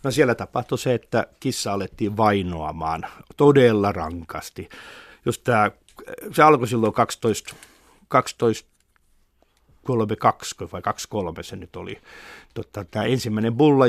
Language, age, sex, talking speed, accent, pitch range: Finnish, 60-79, male, 120 wpm, native, 115-165 Hz